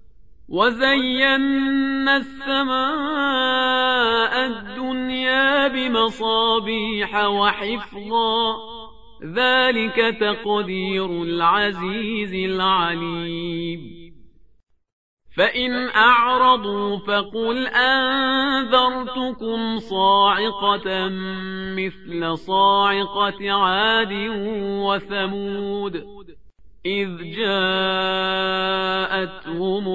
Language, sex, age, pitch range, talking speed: Persian, male, 40-59, 185-225 Hz, 40 wpm